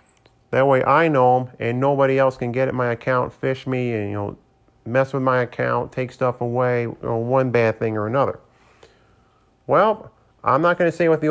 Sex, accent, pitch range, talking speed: male, American, 115-135 Hz, 210 wpm